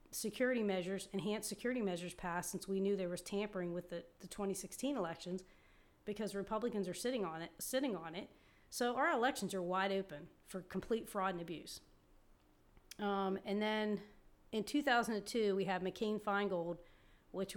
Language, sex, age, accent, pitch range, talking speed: English, female, 30-49, American, 180-205 Hz, 160 wpm